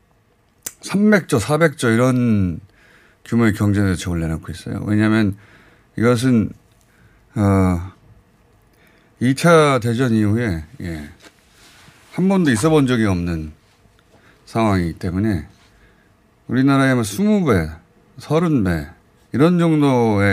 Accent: native